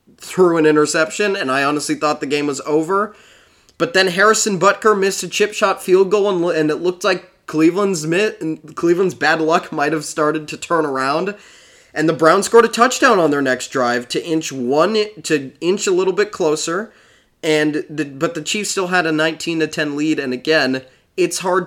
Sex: male